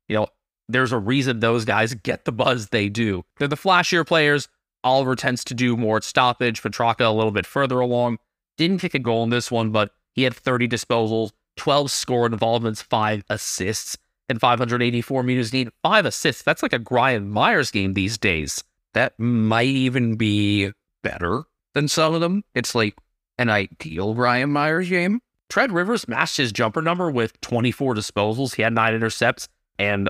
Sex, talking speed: male, 175 wpm